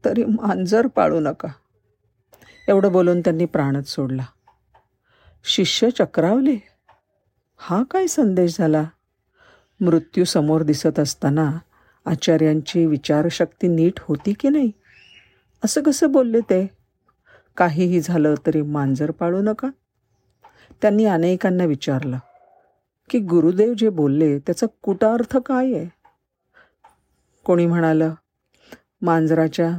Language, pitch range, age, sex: Marathi, 140-195 Hz, 50-69, female